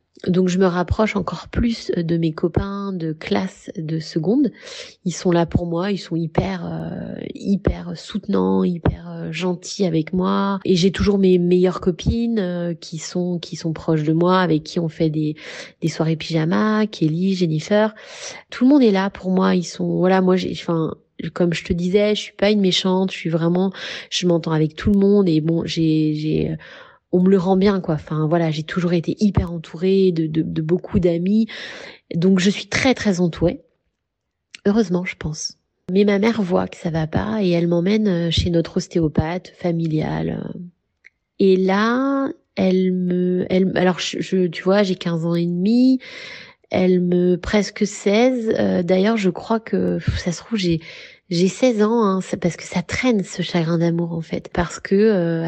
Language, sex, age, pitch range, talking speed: French, female, 30-49, 170-200 Hz, 185 wpm